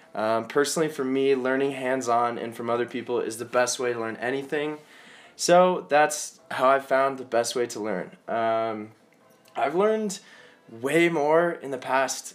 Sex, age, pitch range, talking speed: male, 20-39, 115-150 Hz, 170 wpm